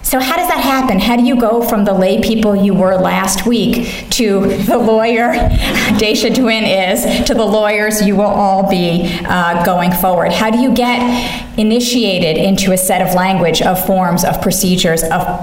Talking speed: 185 wpm